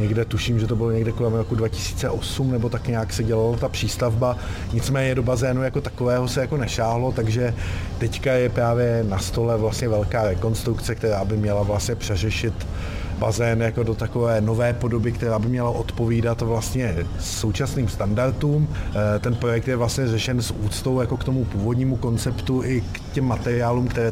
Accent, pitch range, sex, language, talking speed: native, 105-120 Hz, male, Czech, 155 wpm